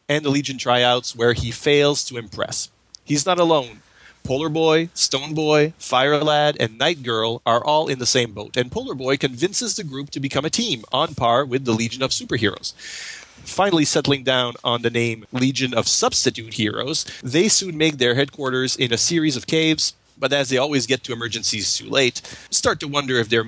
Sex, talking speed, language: male, 200 wpm, English